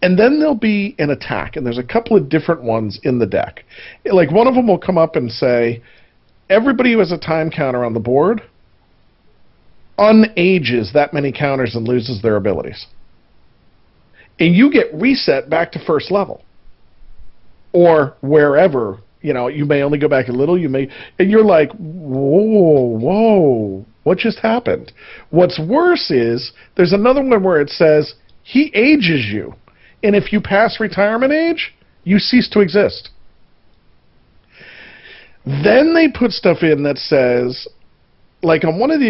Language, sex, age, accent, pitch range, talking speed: English, male, 40-59, American, 135-205 Hz, 160 wpm